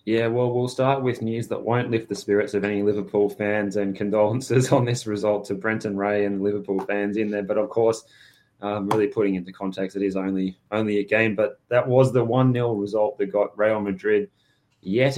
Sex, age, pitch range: male, 20-39, 95-110 Hz